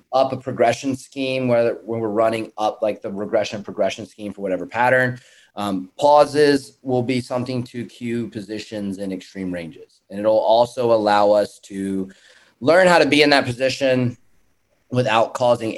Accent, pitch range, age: American, 105-130 Hz, 30-49